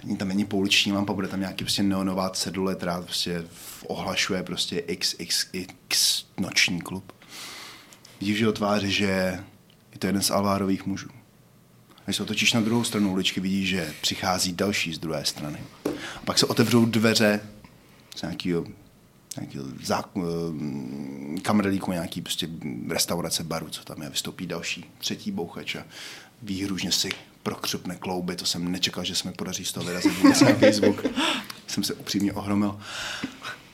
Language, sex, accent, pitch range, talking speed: Czech, male, native, 90-105 Hz, 140 wpm